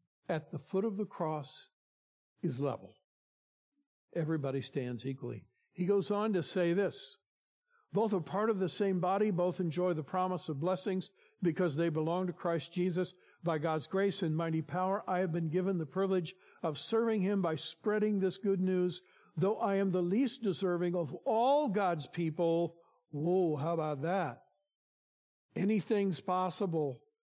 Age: 50-69